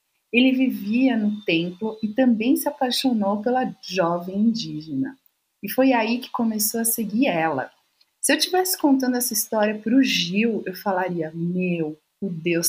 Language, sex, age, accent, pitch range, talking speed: Portuguese, female, 40-59, Brazilian, 185-255 Hz, 155 wpm